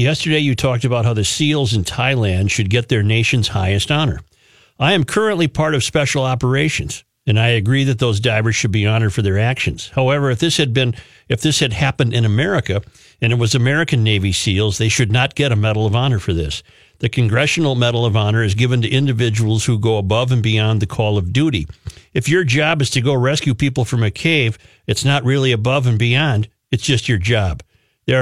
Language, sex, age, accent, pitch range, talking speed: English, male, 50-69, American, 110-135 Hz, 215 wpm